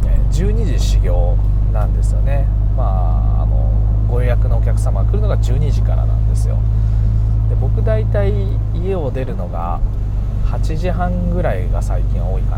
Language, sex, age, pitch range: Japanese, male, 20-39, 100-110 Hz